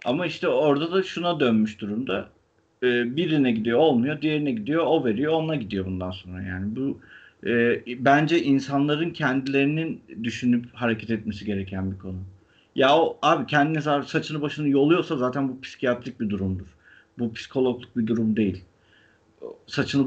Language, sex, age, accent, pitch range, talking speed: Turkish, male, 50-69, native, 115-165 Hz, 150 wpm